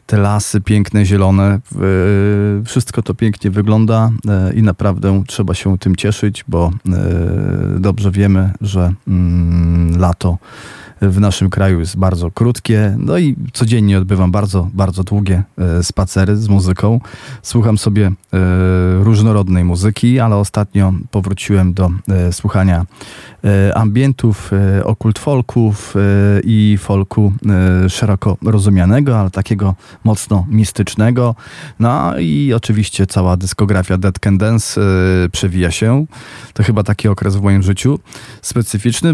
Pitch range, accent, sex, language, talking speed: 95-110 Hz, native, male, Polish, 120 wpm